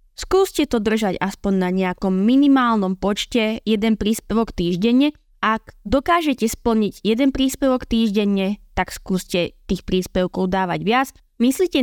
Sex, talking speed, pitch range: female, 120 wpm, 185-240 Hz